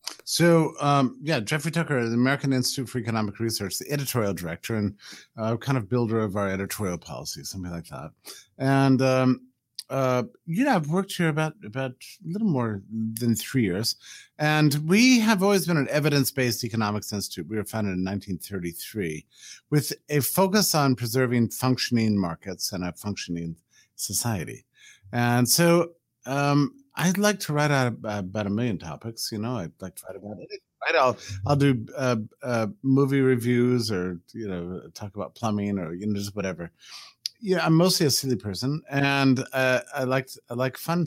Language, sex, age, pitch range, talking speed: English, male, 50-69, 105-145 Hz, 175 wpm